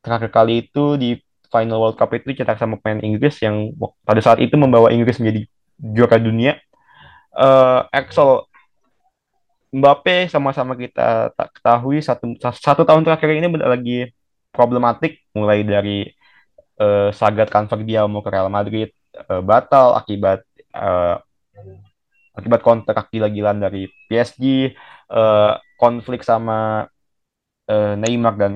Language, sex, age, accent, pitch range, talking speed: Indonesian, male, 20-39, native, 110-145 Hz, 130 wpm